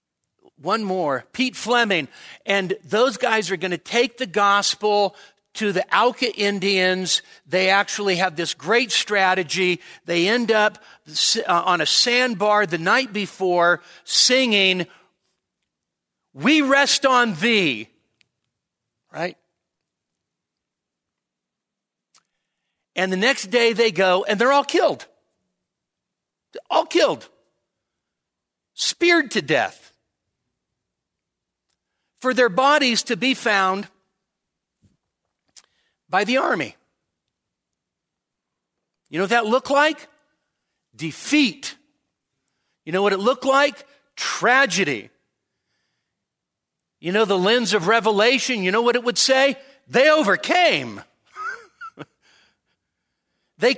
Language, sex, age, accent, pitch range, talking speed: English, male, 50-69, American, 190-255 Hz, 100 wpm